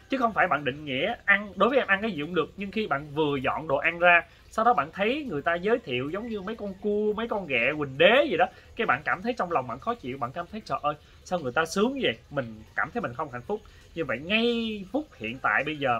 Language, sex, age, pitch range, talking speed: Vietnamese, male, 20-39, 120-180 Hz, 290 wpm